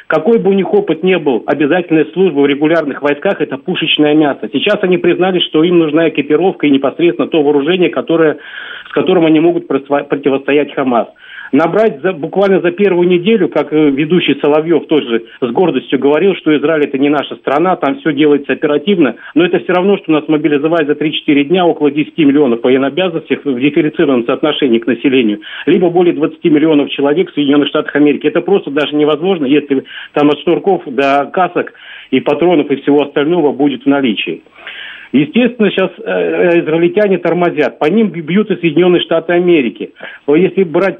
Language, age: Russian, 50-69